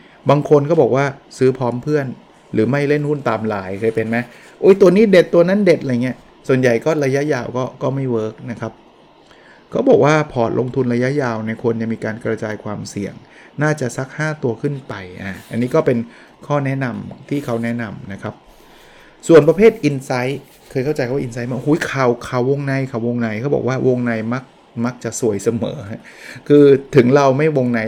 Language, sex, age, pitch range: Thai, male, 20-39, 115-140 Hz